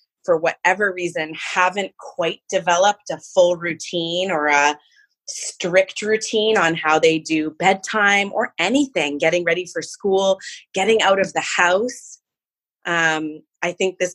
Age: 20-39